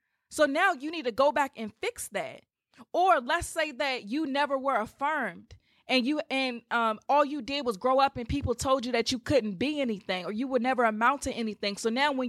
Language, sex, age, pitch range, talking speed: English, female, 20-39, 215-275 Hz, 230 wpm